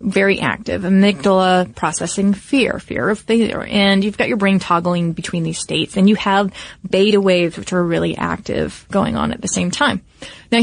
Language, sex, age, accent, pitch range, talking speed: English, female, 30-49, American, 190-225 Hz, 185 wpm